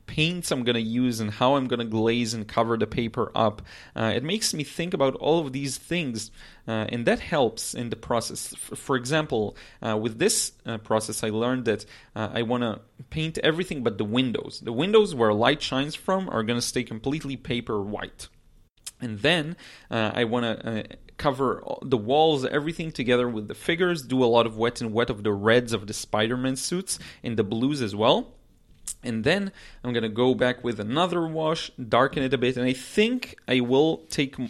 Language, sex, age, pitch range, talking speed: English, male, 30-49, 115-140 Hz, 205 wpm